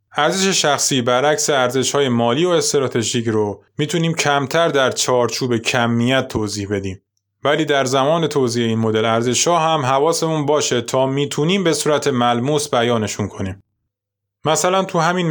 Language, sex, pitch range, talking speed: Persian, male, 120-155 Hz, 135 wpm